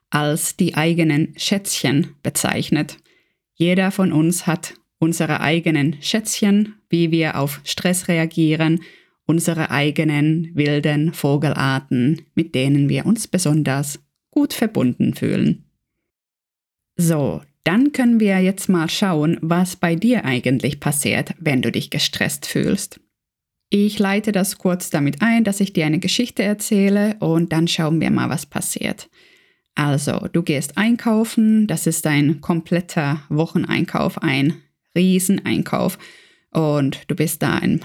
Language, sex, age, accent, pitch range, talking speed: German, female, 20-39, German, 150-185 Hz, 130 wpm